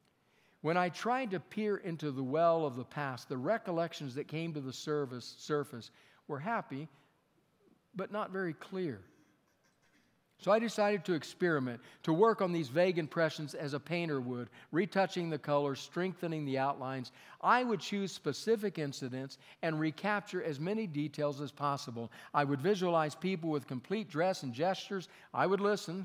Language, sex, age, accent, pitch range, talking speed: English, male, 50-69, American, 135-180 Hz, 160 wpm